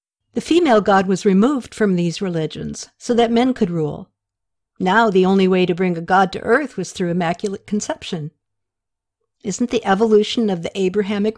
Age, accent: 60-79, American